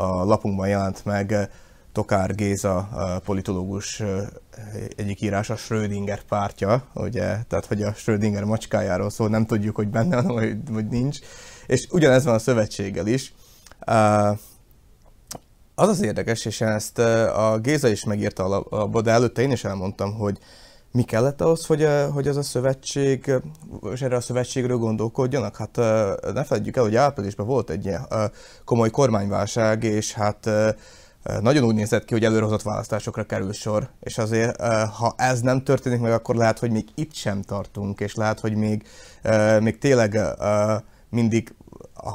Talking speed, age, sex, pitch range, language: 150 wpm, 20-39, male, 105-120 Hz, Hungarian